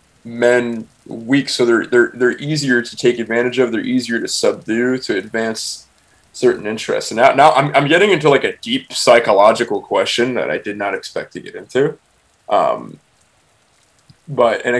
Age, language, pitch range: 20-39, English, 115-135 Hz